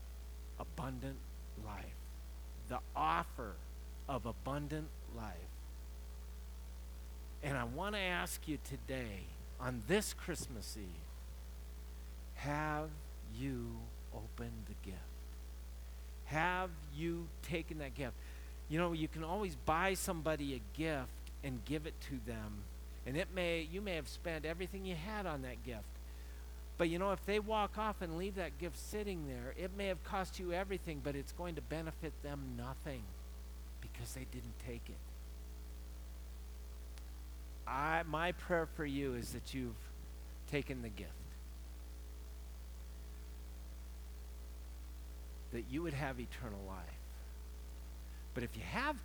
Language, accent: English, American